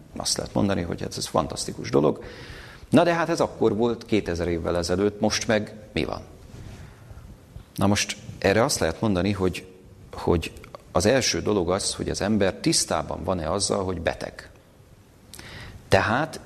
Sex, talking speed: male, 155 wpm